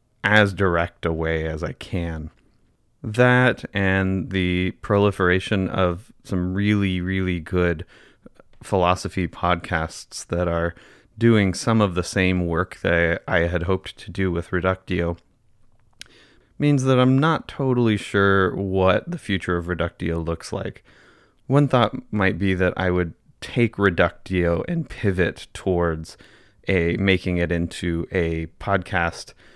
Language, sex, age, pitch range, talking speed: English, male, 30-49, 85-100 Hz, 130 wpm